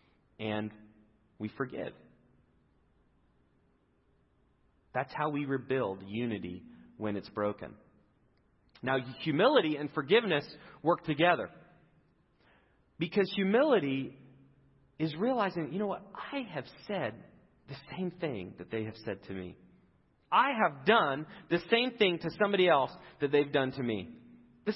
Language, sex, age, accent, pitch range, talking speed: English, male, 40-59, American, 130-190 Hz, 125 wpm